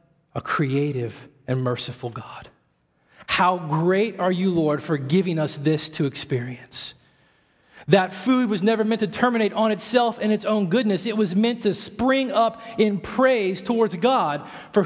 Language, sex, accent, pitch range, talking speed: English, male, American, 140-175 Hz, 160 wpm